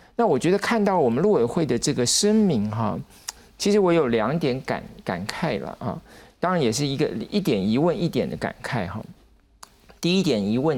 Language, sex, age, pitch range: Chinese, male, 50-69, 115-170 Hz